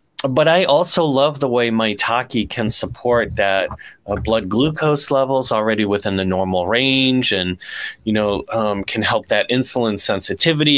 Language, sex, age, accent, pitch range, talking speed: English, male, 30-49, American, 105-135 Hz, 155 wpm